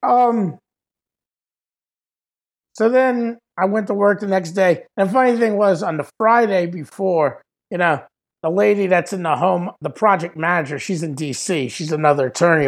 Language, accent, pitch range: English, American, 150-190 Hz